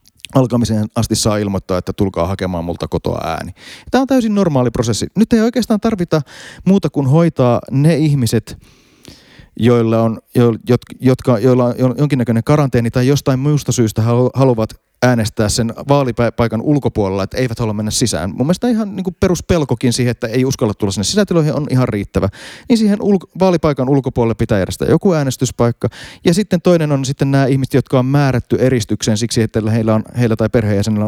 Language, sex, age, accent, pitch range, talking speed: Finnish, male, 30-49, native, 110-145 Hz, 170 wpm